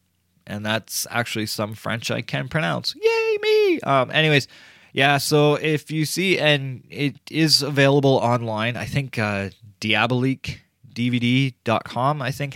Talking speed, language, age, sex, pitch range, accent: 140 wpm, English, 20-39, male, 100-135 Hz, American